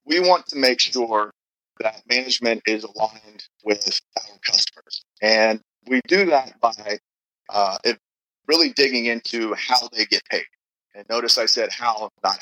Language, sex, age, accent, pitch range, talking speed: English, male, 40-59, American, 110-130 Hz, 150 wpm